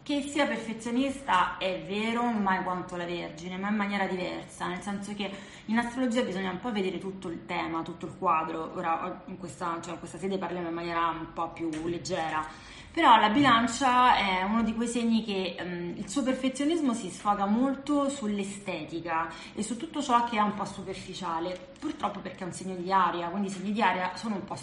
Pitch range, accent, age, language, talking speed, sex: 180-230 Hz, native, 20-39, Italian, 205 wpm, female